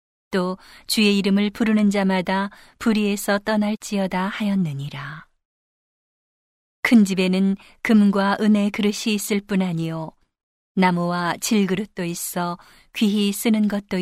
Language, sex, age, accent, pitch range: Korean, female, 40-59, native, 175-210 Hz